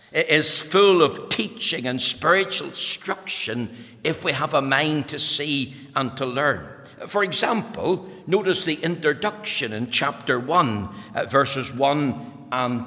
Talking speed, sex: 130 wpm, male